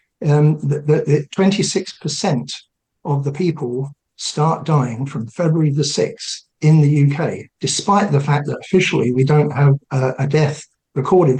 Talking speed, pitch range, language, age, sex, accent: 155 wpm, 140-165 Hz, English, 60-79, male, British